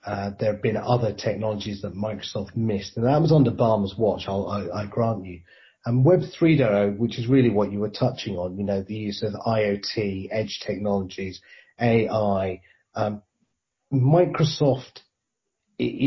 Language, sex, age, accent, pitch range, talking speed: English, male, 30-49, British, 105-130 Hz, 165 wpm